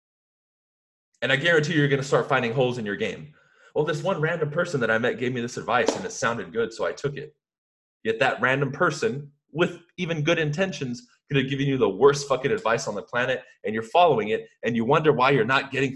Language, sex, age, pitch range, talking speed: English, male, 30-49, 135-180 Hz, 230 wpm